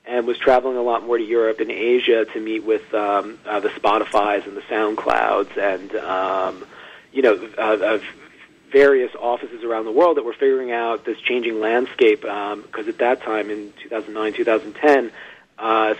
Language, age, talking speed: English, 30-49, 170 wpm